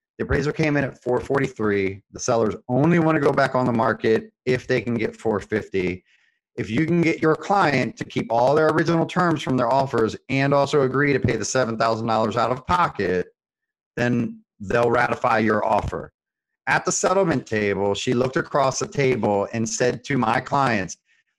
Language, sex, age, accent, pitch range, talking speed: English, male, 30-49, American, 115-145 Hz, 180 wpm